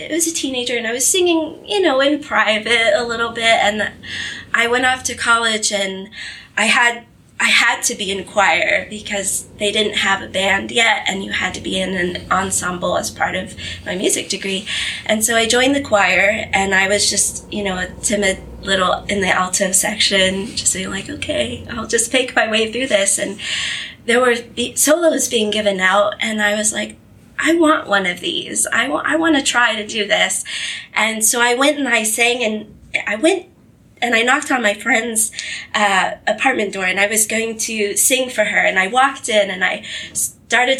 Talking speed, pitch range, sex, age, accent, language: 205 wpm, 205-265 Hz, female, 20-39, American, English